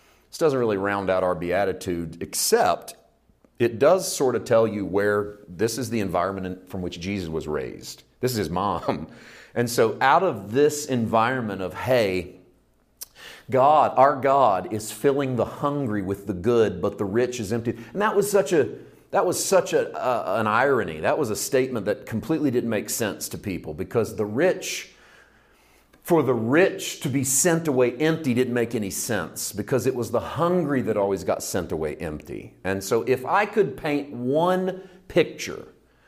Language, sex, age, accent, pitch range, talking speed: English, male, 40-59, American, 100-140 Hz, 175 wpm